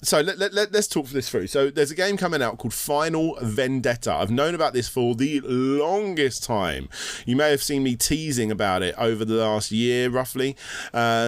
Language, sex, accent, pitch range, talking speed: English, male, British, 110-140 Hz, 190 wpm